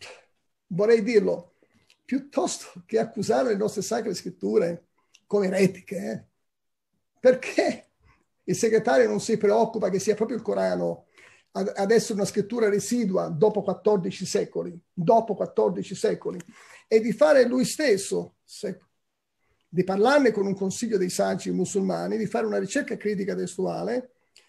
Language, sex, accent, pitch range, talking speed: Italian, male, native, 195-230 Hz, 130 wpm